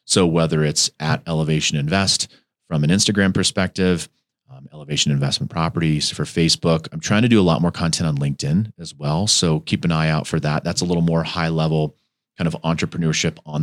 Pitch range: 80-90 Hz